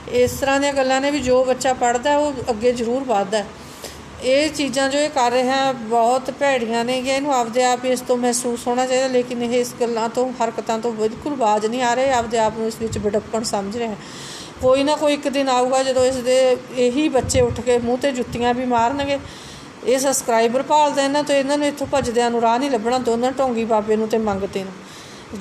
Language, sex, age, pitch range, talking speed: Punjabi, female, 40-59, 235-275 Hz, 210 wpm